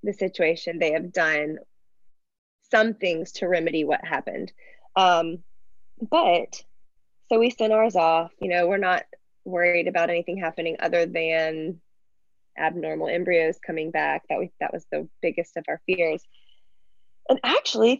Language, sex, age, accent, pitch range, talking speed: English, female, 20-39, American, 165-200 Hz, 145 wpm